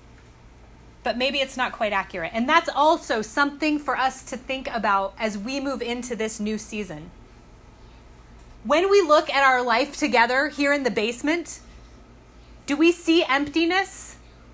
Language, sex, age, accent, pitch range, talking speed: English, female, 30-49, American, 185-285 Hz, 155 wpm